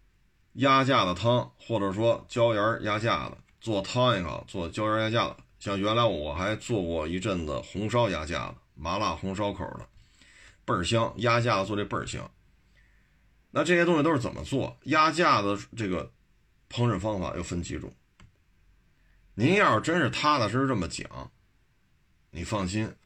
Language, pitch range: Chinese, 90-125 Hz